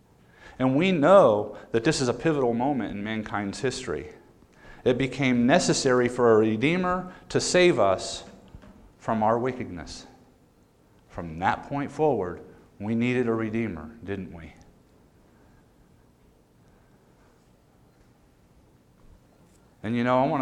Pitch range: 105-125 Hz